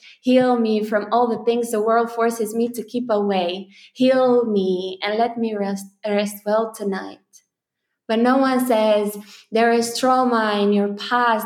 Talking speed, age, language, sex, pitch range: 170 wpm, 20-39, English, female, 210-240 Hz